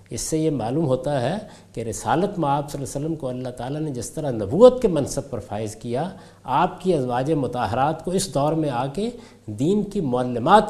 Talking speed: 220 wpm